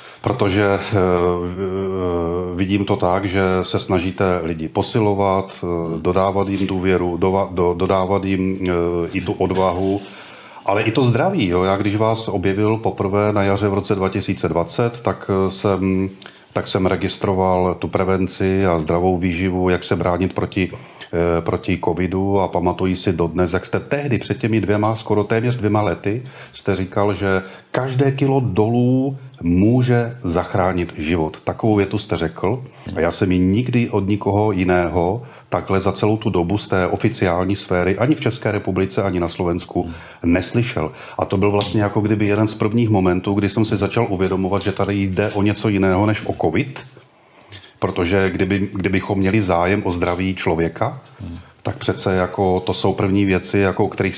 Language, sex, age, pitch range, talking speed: Slovak, male, 40-59, 90-105 Hz, 160 wpm